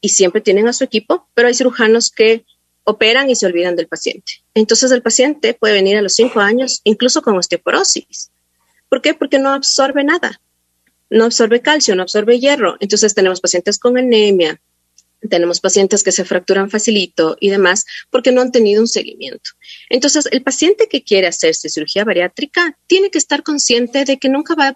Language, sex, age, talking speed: Spanish, female, 40-59, 185 wpm